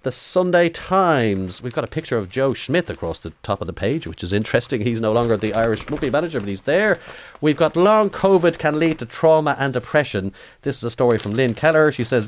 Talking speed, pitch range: 235 wpm, 95-120 Hz